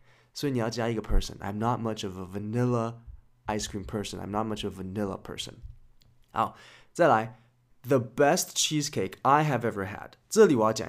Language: Chinese